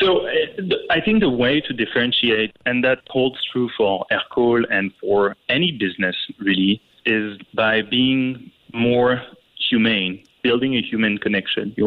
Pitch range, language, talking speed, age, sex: 105-135 Hz, English, 140 wpm, 30-49, male